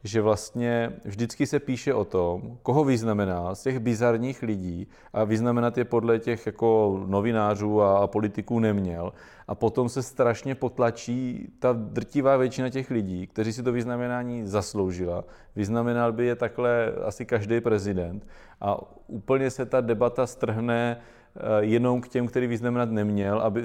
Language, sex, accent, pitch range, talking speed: Czech, male, native, 105-120 Hz, 145 wpm